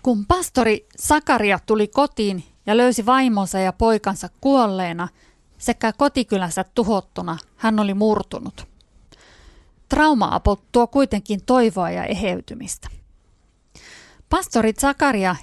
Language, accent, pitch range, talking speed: Finnish, native, 195-245 Hz, 100 wpm